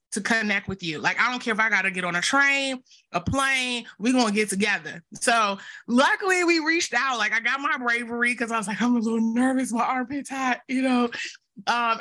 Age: 20-39